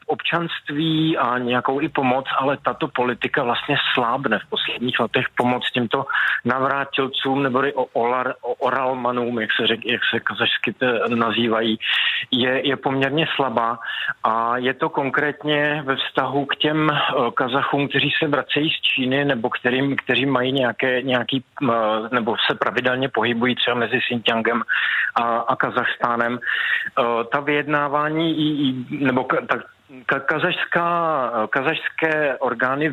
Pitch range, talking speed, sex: 125-140 Hz, 120 wpm, male